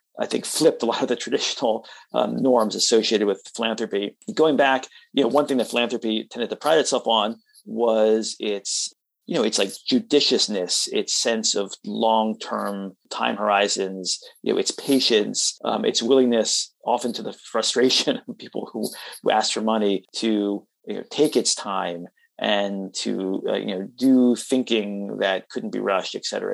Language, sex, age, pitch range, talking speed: English, male, 30-49, 100-135 Hz, 170 wpm